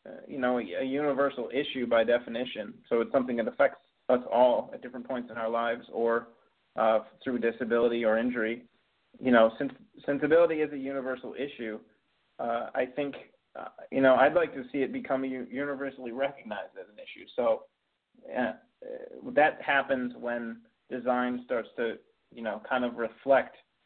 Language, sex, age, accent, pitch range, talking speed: English, male, 30-49, American, 110-135 Hz, 160 wpm